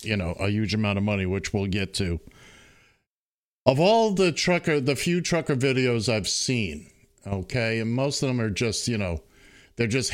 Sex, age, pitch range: male, 50-69, 110-155 Hz